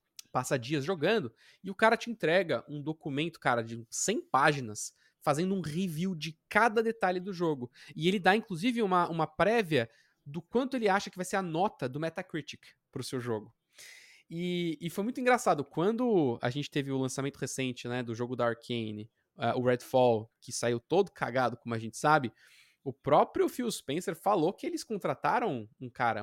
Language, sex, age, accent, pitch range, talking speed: Portuguese, male, 20-39, Brazilian, 130-200 Hz, 185 wpm